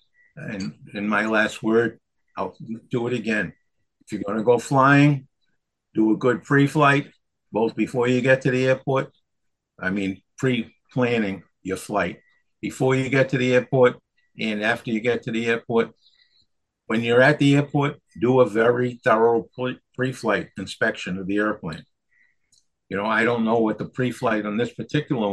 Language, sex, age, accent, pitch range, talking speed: English, male, 50-69, American, 110-130 Hz, 165 wpm